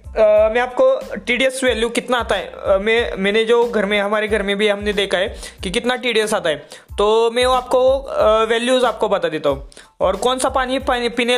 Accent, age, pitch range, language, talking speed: native, 20-39, 210-245 Hz, Hindi, 210 wpm